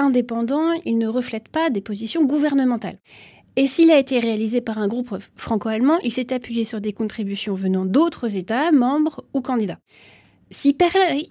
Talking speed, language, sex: 165 wpm, French, female